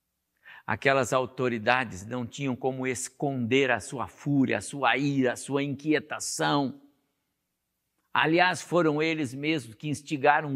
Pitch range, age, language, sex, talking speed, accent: 115-150 Hz, 60-79, Portuguese, male, 120 wpm, Brazilian